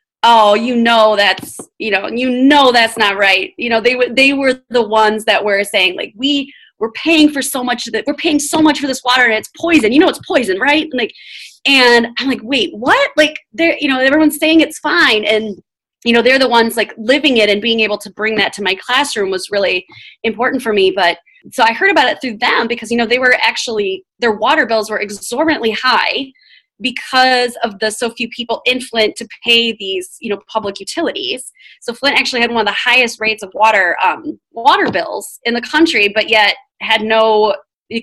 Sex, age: female, 20-39